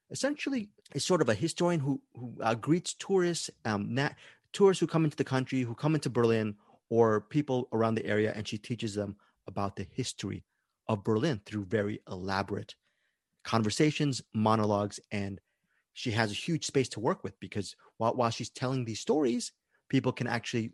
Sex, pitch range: male, 115-160 Hz